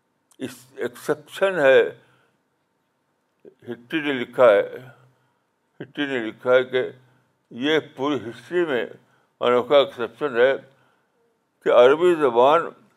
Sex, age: male, 60-79